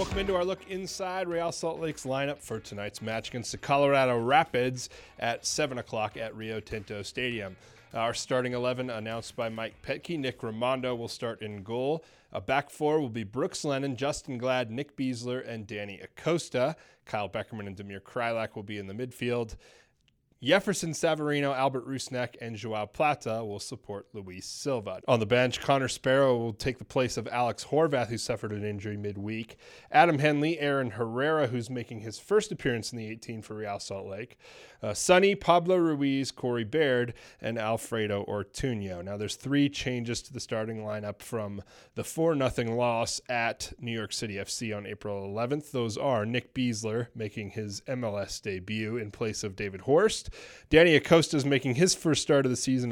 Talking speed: 175 wpm